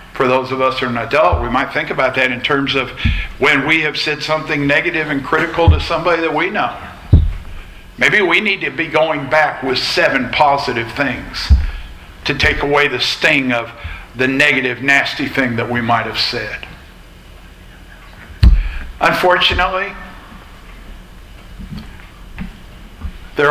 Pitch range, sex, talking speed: 120-160 Hz, male, 145 wpm